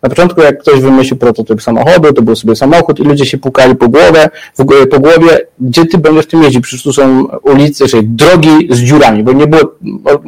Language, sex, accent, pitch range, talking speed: Polish, male, native, 125-150 Hz, 230 wpm